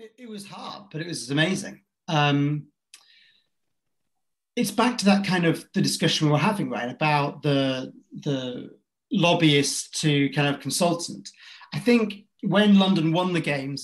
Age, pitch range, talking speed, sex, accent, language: 40-59, 145-180 Hz, 150 wpm, male, British, English